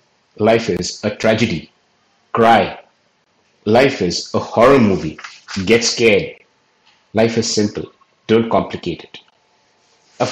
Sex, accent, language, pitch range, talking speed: male, Indian, English, 105-125 Hz, 110 wpm